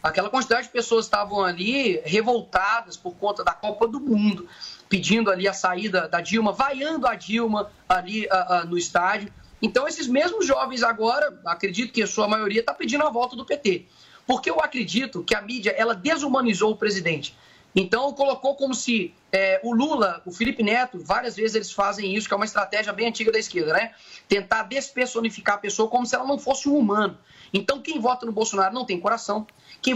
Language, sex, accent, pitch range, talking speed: Portuguese, male, Brazilian, 205-250 Hz, 185 wpm